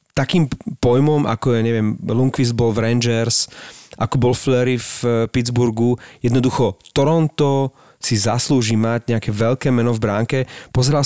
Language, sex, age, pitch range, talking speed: Slovak, male, 40-59, 110-135 Hz, 140 wpm